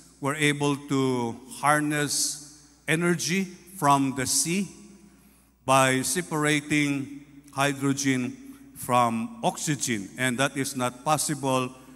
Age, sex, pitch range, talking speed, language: 50-69, male, 125-150 Hz, 90 wpm, English